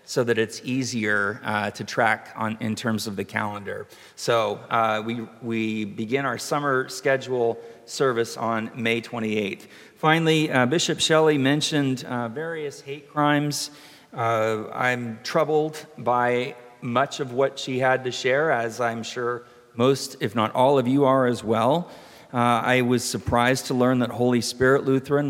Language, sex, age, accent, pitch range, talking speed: English, male, 40-59, American, 115-140 Hz, 160 wpm